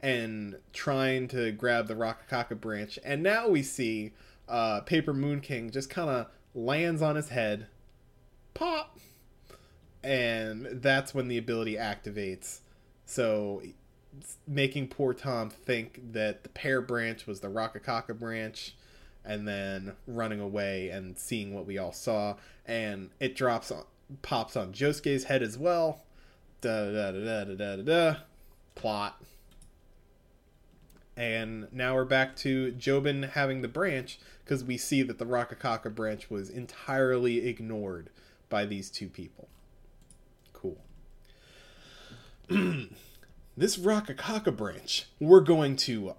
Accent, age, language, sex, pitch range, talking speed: American, 20-39, English, male, 105-140 Hz, 130 wpm